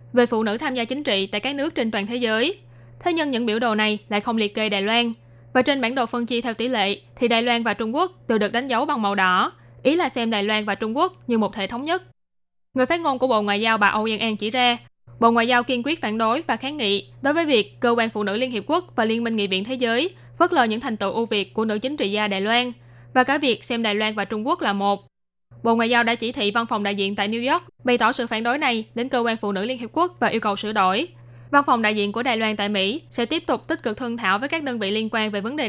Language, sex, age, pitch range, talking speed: Vietnamese, female, 10-29, 205-255 Hz, 305 wpm